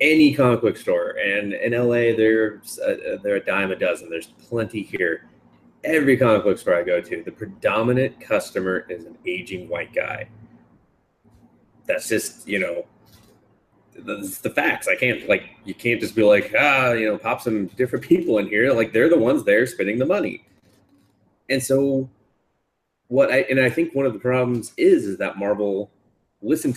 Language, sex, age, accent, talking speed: English, male, 30-49, American, 175 wpm